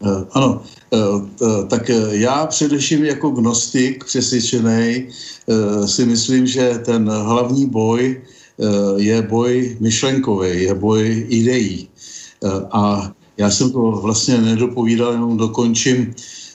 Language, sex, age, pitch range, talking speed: Slovak, male, 60-79, 105-125 Hz, 100 wpm